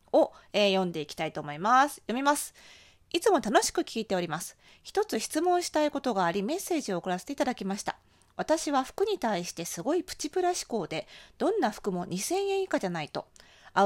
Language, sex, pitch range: Japanese, female, 185-290 Hz